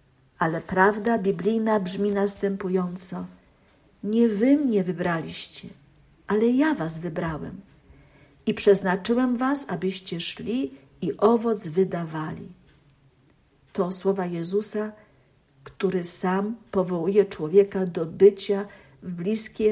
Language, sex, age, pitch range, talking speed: Polish, female, 50-69, 180-210 Hz, 95 wpm